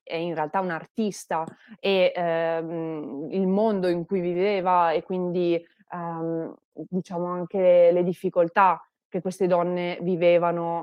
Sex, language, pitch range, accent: female, Italian, 170-200 Hz, native